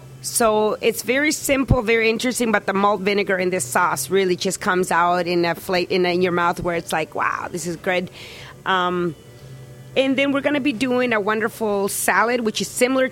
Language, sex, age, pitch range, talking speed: English, female, 30-49, 175-205 Hz, 210 wpm